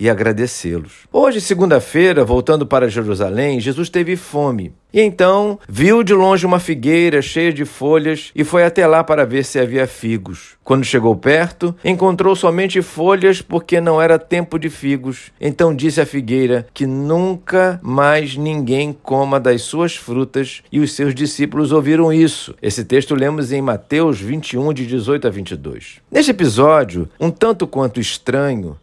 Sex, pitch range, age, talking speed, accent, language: male, 130-175 Hz, 50-69, 155 wpm, Brazilian, Portuguese